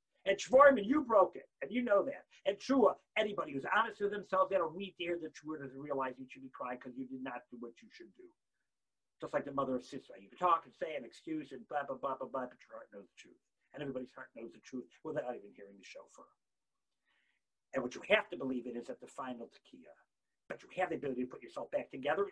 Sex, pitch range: male, 130-200 Hz